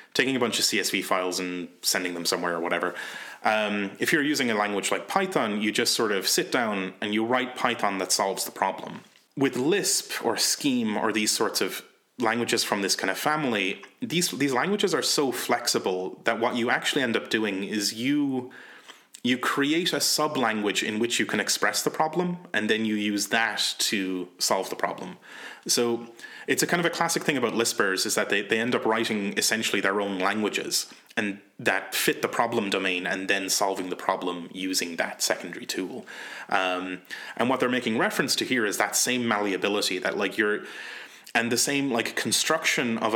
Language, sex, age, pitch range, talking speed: English, male, 30-49, 95-125 Hz, 195 wpm